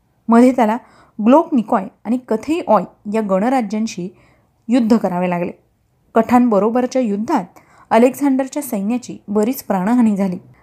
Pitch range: 200-245 Hz